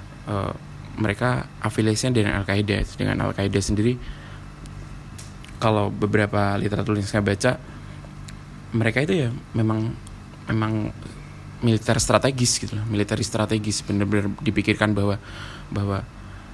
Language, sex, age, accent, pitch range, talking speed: Indonesian, male, 20-39, native, 105-125 Hz, 110 wpm